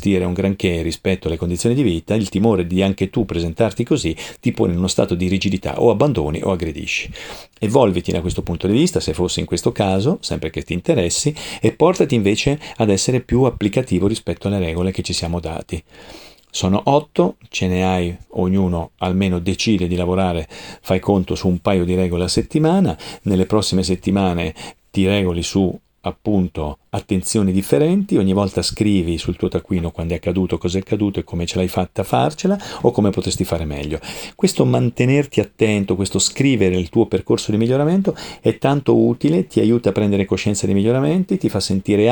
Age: 40-59